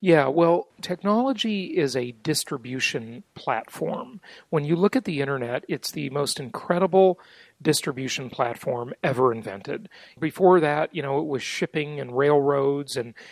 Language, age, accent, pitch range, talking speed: English, 40-59, American, 140-190 Hz, 140 wpm